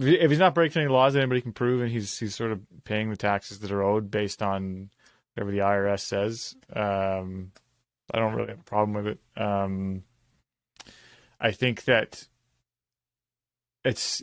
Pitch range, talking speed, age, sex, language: 100-120 Hz, 175 wpm, 20-39, male, English